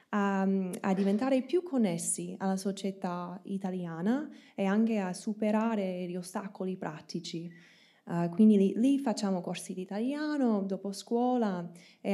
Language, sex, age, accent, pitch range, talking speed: Italian, female, 20-39, native, 180-215 Hz, 120 wpm